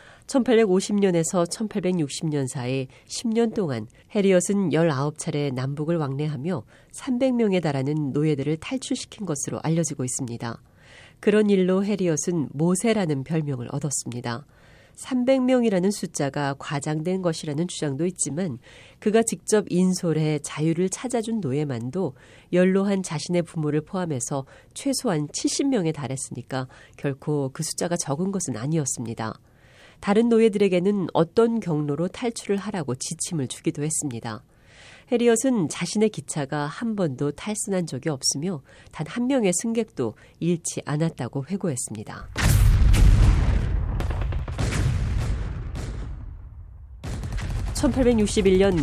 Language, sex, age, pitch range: Korean, female, 40-59, 130-190 Hz